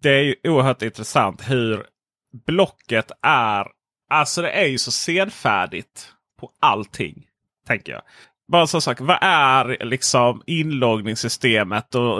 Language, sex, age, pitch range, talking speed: Swedish, male, 30-49, 110-140 Hz, 130 wpm